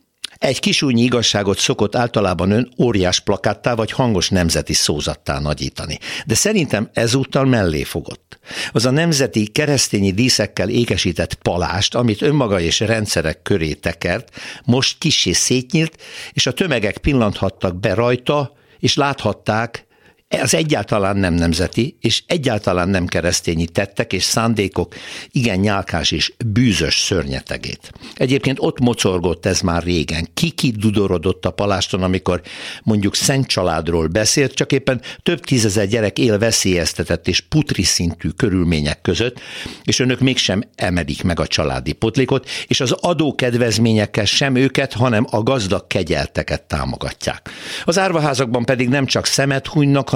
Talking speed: 130 wpm